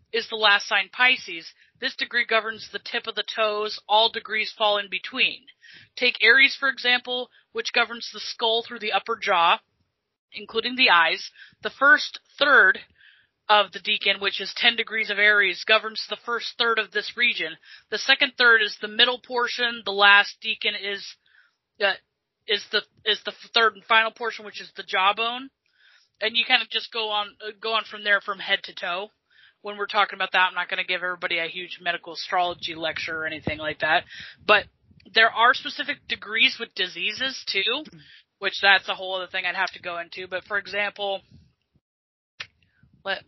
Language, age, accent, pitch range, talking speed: English, 30-49, American, 200-240 Hz, 185 wpm